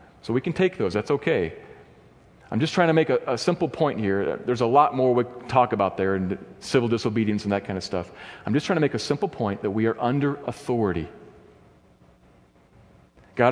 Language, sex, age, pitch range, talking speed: English, male, 40-59, 110-165 Hz, 210 wpm